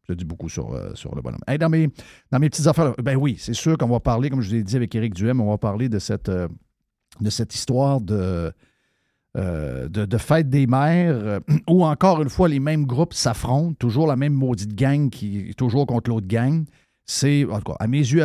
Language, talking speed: French, 225 wpm